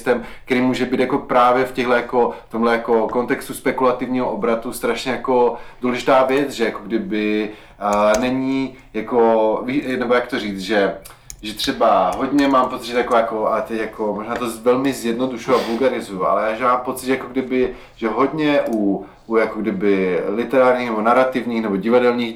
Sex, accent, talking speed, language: male, native, 165 wpm, Czech